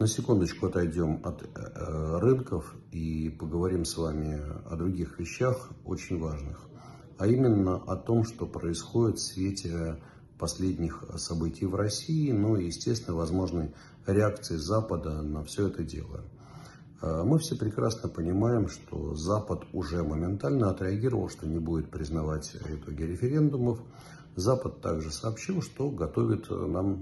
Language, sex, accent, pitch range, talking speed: Russian, male, native, 85-115 Hz, 125 wpm